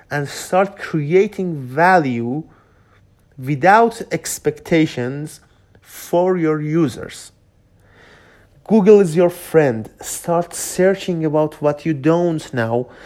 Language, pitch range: Persian, 130-175 Hz